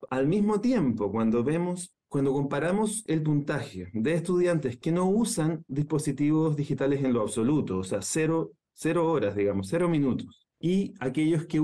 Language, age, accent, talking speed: Spanish, 30-49, Argentinian, 150 wpm